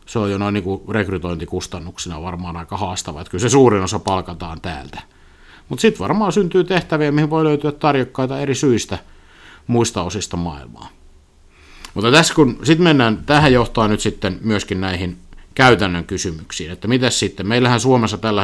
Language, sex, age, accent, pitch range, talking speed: Finnish, male, 50-69, native, 85-125 Hz, 155 wpm